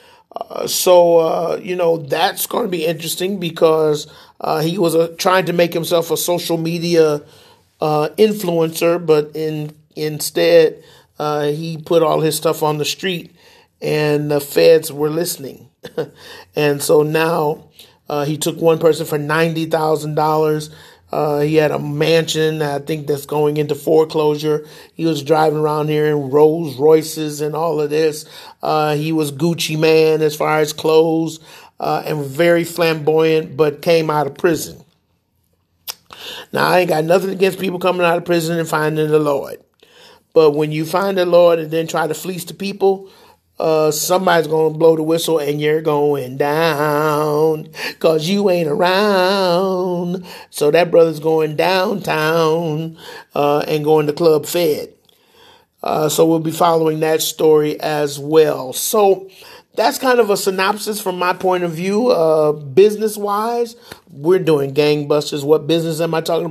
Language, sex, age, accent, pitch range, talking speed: English, male, 40-59, American, 155-180 Hz, 160 wpm